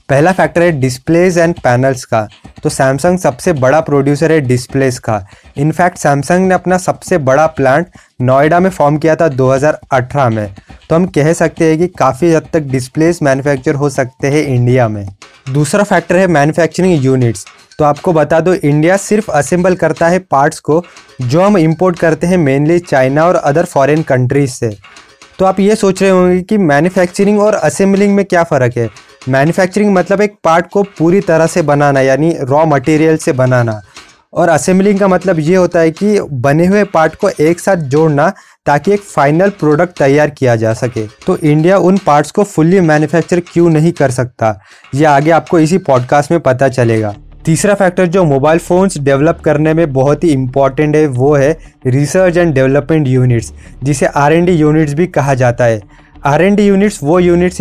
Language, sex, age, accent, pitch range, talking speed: Hindi, male, 20-39, native, 135-180 Hz, 185 wpm